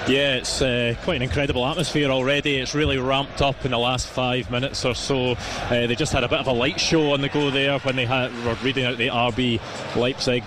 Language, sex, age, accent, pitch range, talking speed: English, male, 20-39, British, 130-150 Hz, 240 wpm